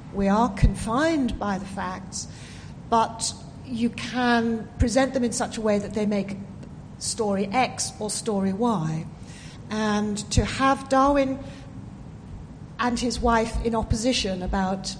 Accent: British